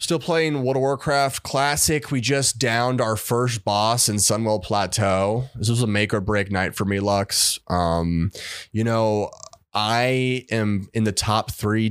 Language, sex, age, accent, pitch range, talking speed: English, male, 20-39, American, 100-120 Hz, 170 wpm